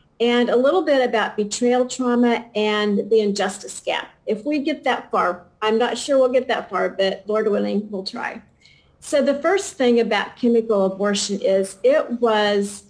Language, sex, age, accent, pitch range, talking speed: English, female, 50-69, American, 195-240 Hz, 175 wpm